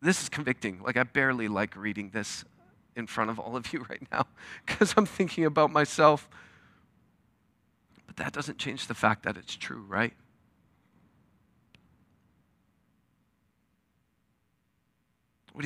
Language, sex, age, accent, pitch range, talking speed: English, male, 40-59, American, 135-190 Hz, 125 wpm